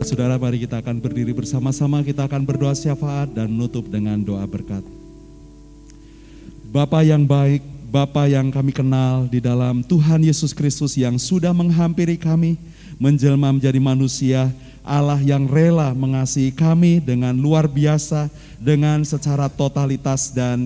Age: 30-49